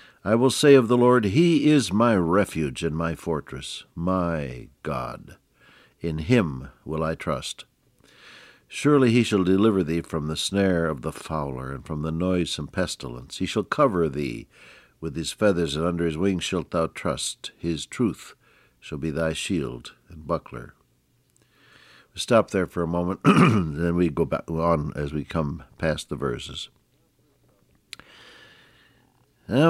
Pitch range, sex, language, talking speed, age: 80-110 Hz, male, English, 160 wpm, 60-79